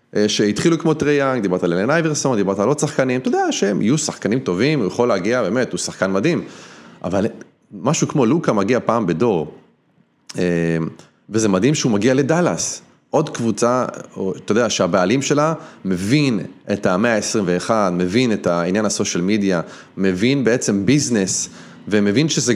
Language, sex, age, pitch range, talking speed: Hebrew, male, 30-49, 100-145 Hz, 150 wpm